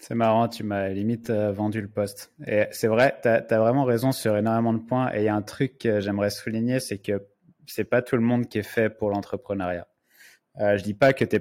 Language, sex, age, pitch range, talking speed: French, male, 20-39, 100-120 Hz, 240 wpm